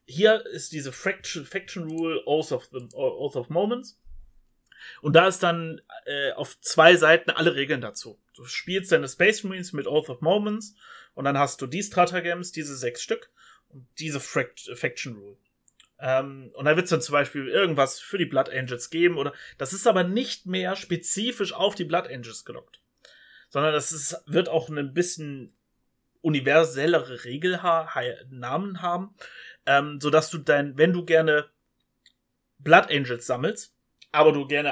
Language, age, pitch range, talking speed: German, 30-49, 130-180 Hz, 160 wpm